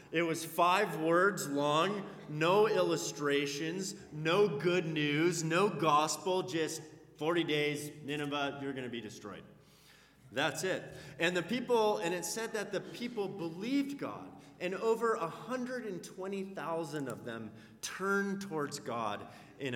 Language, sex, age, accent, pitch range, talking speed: English, male, 30-49, American, 120-165 Hz, 130 wpm